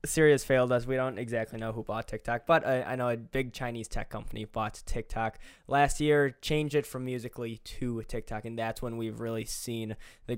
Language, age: English, 10-29